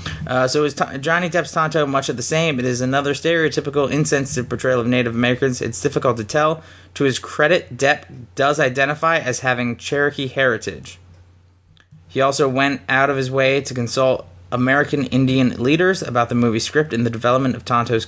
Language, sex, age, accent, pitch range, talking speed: English, male, 30-49, American, 115-135 Hz, 185 wpm